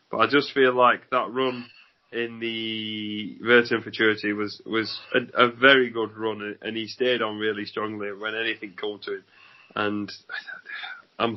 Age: 30-49